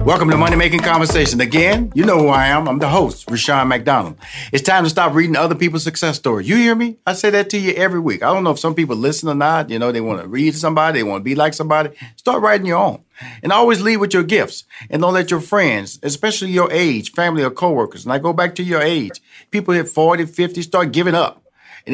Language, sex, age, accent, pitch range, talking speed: English, male, 40-59, American, 125-175 Hz, 255 wpm